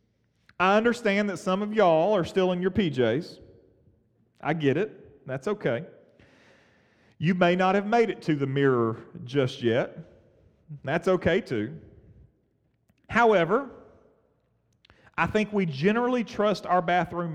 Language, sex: English, male